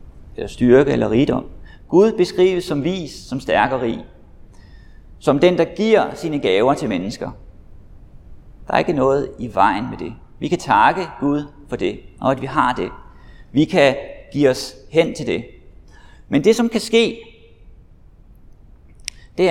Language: Danish